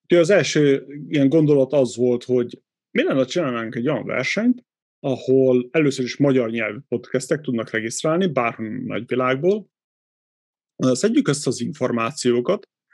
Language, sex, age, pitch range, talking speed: Hungarian, male, 30-49, 120-155 Hz, 135 wpm